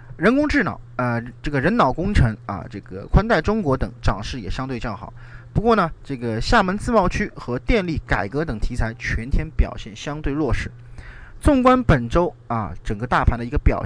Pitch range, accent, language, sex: 115-155 Hz, native, Chinese, male